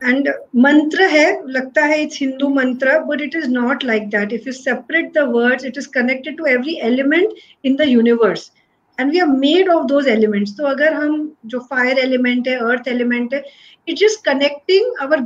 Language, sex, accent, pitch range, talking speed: Hindi, female, native, 250-310 Hz, 195 wpm